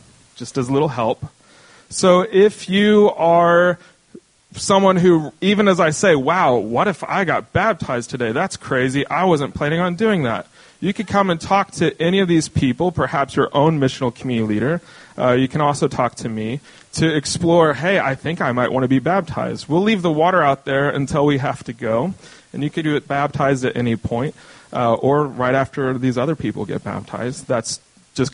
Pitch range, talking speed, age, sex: 125-165 Hz, 200 wpm, 30-49, male